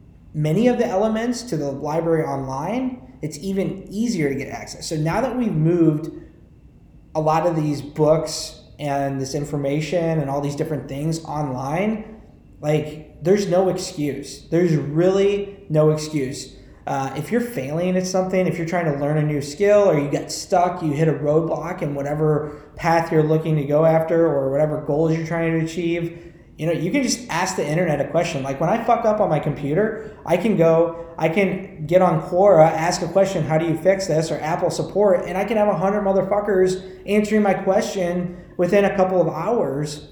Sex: male